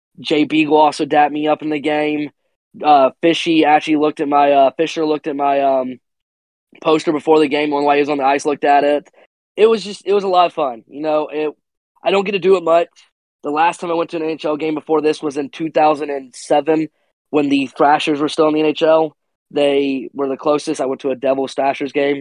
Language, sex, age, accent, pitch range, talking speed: English, male, 20-39, American, 140-160 Hz, 230 wpm